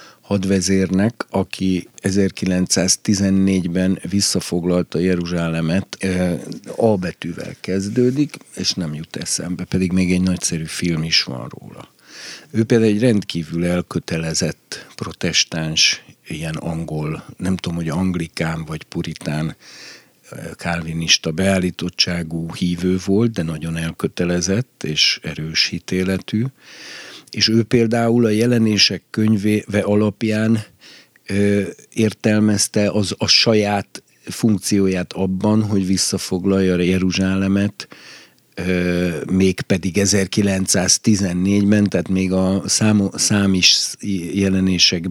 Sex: male